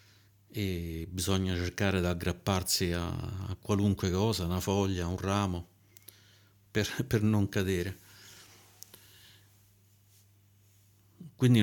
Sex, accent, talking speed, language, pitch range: male, native, 95 wpm, Italian, 95-105 Hz